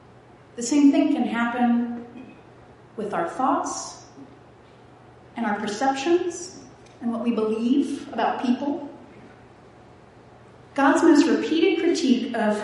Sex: female